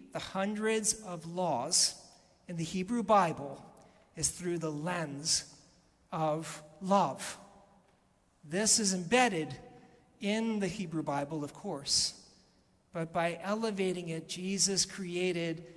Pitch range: 175-220 Hz